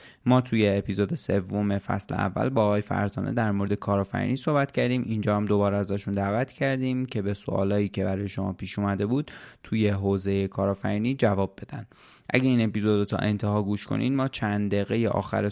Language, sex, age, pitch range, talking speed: Persian, male, 20-39, 100-115 Hz, 180 wpm